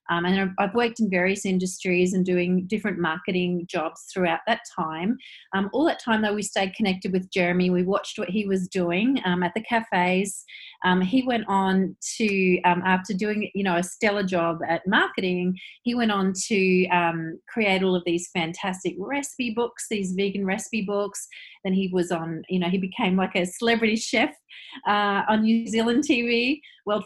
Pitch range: 185-225 Hz